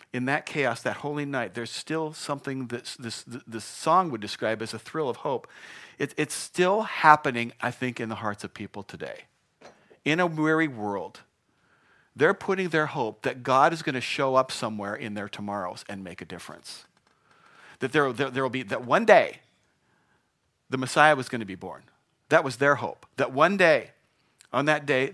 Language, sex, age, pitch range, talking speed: English, male, 40-59, 105-145 Hz, 185 wpm